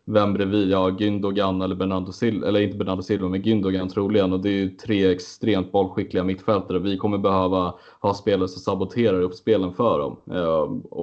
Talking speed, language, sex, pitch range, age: 185 wpm, Swedish, male, 95-105 Hz, 20-39